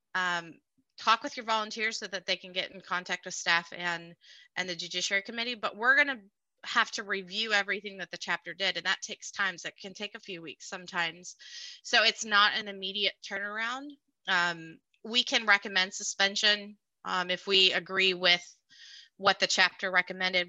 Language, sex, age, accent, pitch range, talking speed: English, female, 30-49, American, 180-220 Hz, 185 wpm